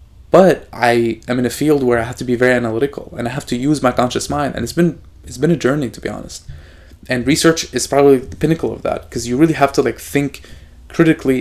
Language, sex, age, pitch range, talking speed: English, male, 20-39, 105-135 Hz, 245 wpm